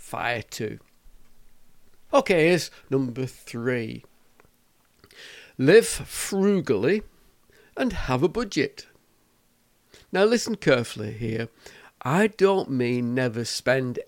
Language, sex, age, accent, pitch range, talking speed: English, male, 60-79, British, 120-200 Hz, 90 wpm